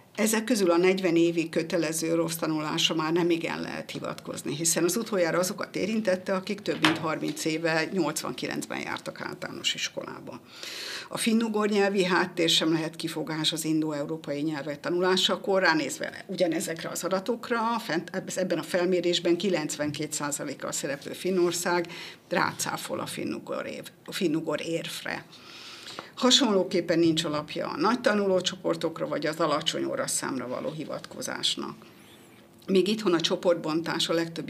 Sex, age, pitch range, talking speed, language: female, 50-69, 165-190 Hz, 130 wpm, Hungarian